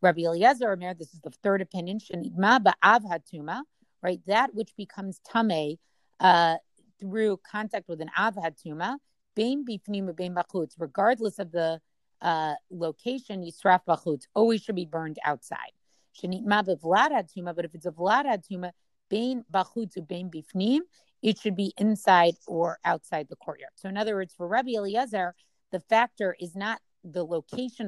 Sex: female